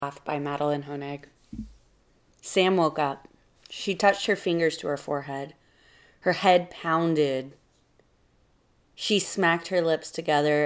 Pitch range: 140-170 Hz